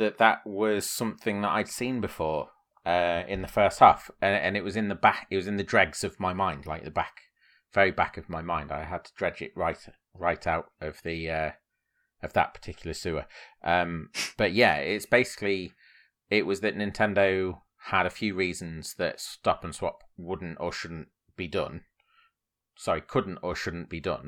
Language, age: English, 30-49